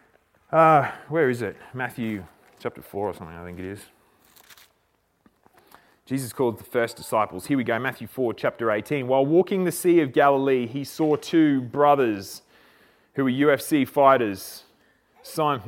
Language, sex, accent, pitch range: English, male, Australian, 115-145 Hz